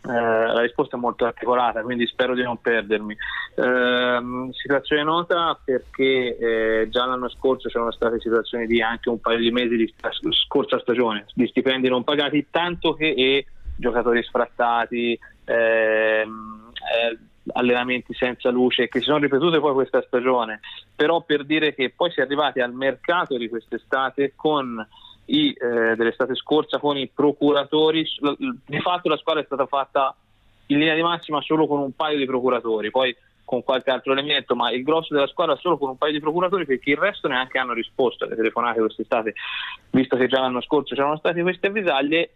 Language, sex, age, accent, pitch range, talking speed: Italian, male, 30-49, native, 120-145 Hz, 170 wpm